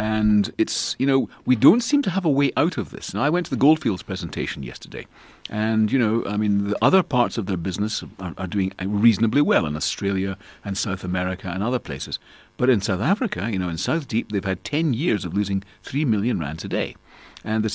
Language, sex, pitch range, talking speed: English, male, 95-120 Hz, 230 wpm